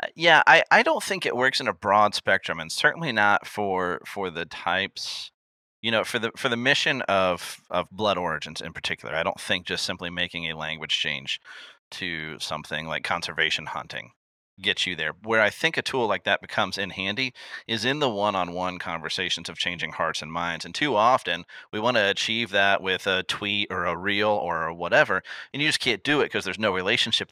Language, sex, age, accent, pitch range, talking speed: English, male, 30-49, American, 95-125 Hz, 205 wpm